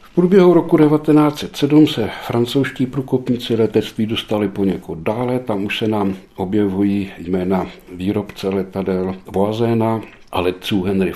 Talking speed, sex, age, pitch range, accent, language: 125 wpm, male, 60-79, 95-125 Hz, native, Czech